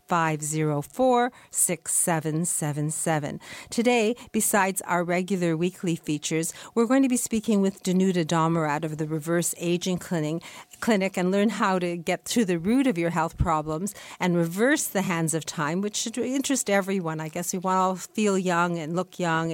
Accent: American